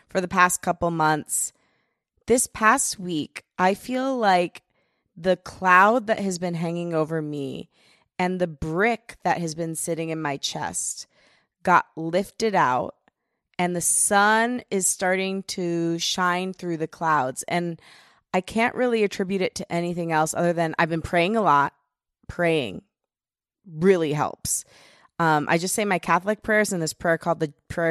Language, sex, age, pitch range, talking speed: English, female, 20-39, 155-190 Hz, 160 wpm